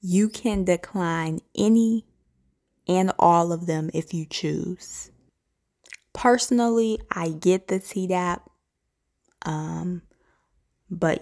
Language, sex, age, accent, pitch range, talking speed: English, female, 20-39, American, 160-185 Hz, 95 wpm